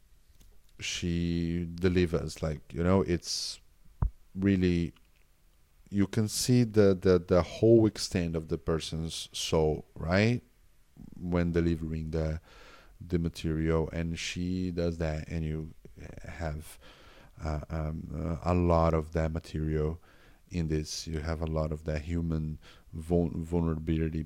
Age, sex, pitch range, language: 30-49, male, 80-95 Hz, English